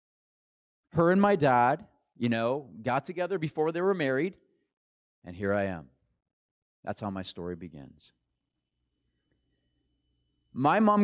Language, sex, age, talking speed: English, male, 30-49, 125 wpm